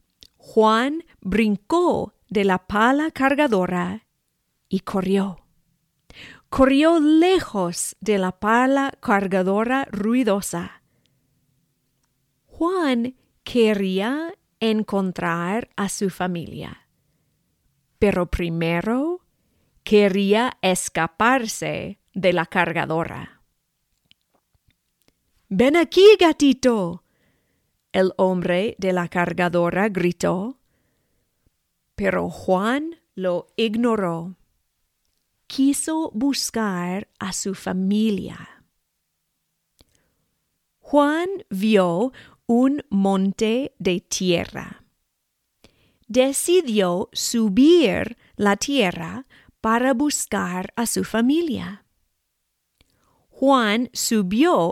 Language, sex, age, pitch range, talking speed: English, female, 40-59, 180-255 Hz, 70 wpm